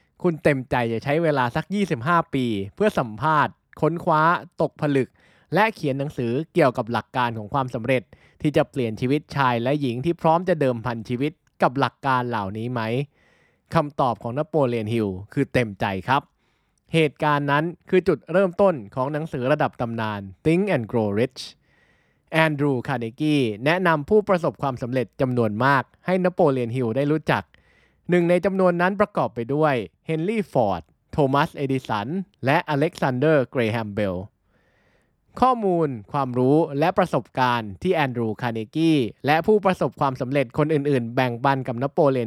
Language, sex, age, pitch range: Thai, male, 20-39, 120-160 Hz